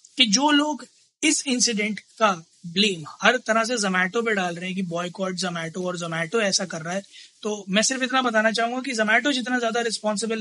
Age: 20-39